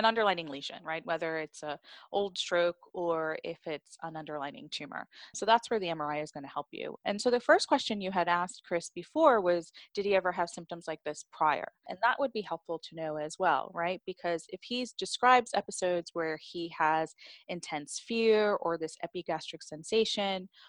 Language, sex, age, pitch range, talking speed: English, female, 20-39, 160-195 Hz, 195 wpm